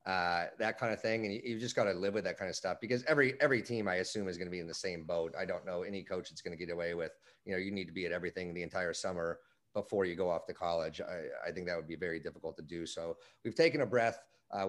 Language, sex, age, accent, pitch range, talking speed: English, male, 30-49, American, 90-110 Hz, 305 wpm